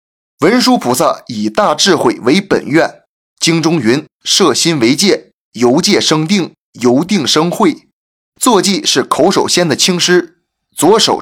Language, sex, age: Chinese, male, 20-39